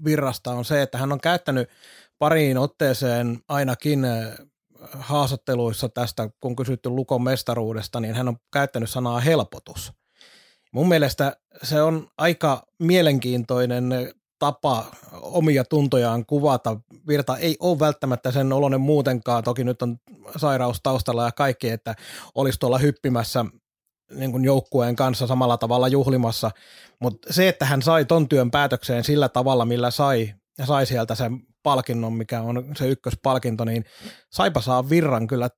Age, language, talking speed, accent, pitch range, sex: 30-49, Finnish, 135 wpm, native, 120-145 Hz, male